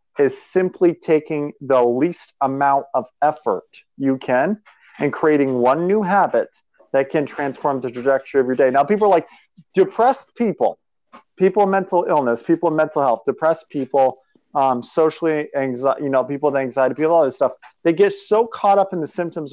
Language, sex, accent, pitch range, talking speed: English, male, American, 140-195 Hz, 170 wpm